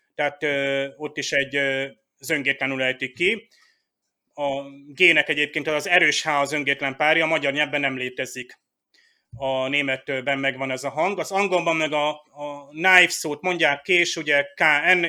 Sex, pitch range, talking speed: male, 140-165 Hz, 145 wpm